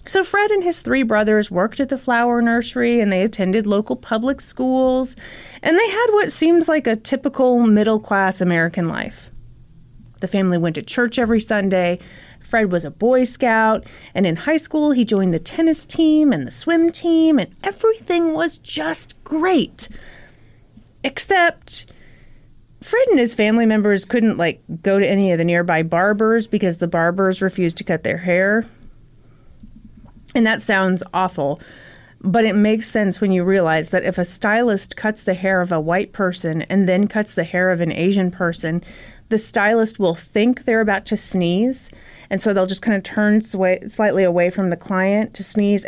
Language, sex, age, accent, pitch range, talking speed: English, female, 30-49, American, 180-235 Hz, 175 wpm